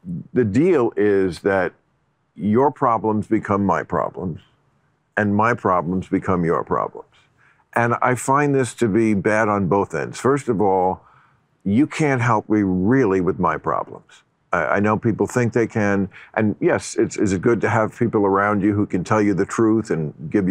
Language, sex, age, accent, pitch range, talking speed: English, male, 50-69, American, 105-165 Hz, 180 wpm